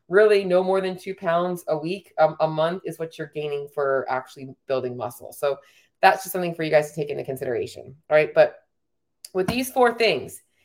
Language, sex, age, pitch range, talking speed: English, female, 30-49, 175-215 Hz, 210 wpm